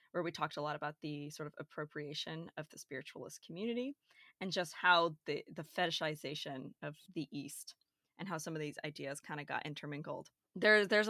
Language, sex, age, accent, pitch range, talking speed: English, female, 20-39, American, 155-200 Hz, 185 wpm